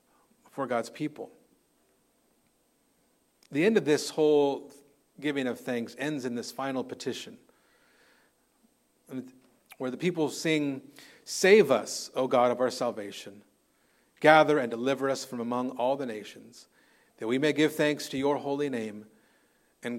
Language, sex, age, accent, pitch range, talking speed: English, male, 40-59, American, 125-150 Hz, 140 wpm